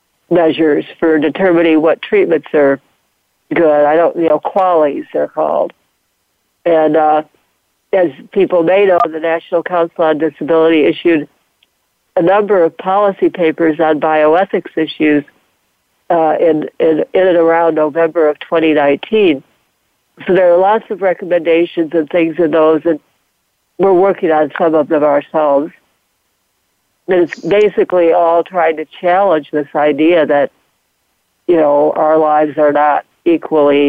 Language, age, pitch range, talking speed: English, 60-79, 155-180 Hz, 140 wpm